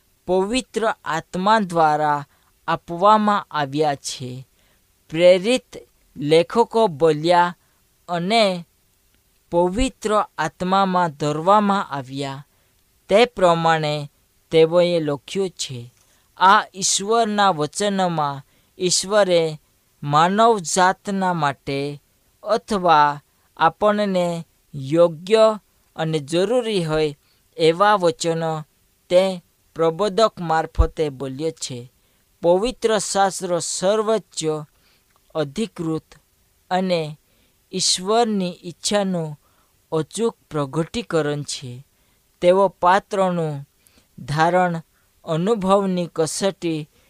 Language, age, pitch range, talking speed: Hindi, 20-39, 145-195 Hz, 60 wpm